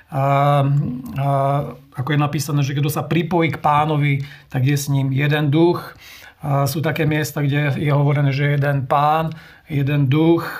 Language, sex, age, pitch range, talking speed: Slovak, male, 40-59, 140-160 Hz, 165 wpm